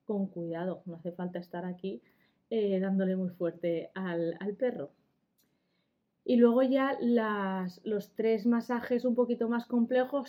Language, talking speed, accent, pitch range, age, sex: Spanish, 145 wpm, Spanish, 190-225 Hz, 20-39, female